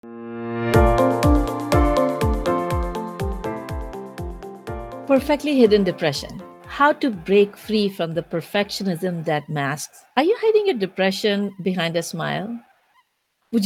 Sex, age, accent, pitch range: female, 50-69, Indian, 170-215 Hz